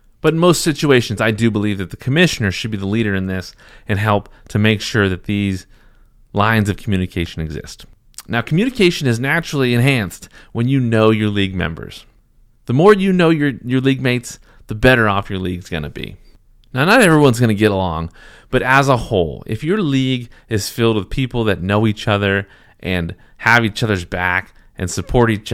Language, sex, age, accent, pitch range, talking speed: English, male, 30-49, American, 95-120 Hz, 195 wpm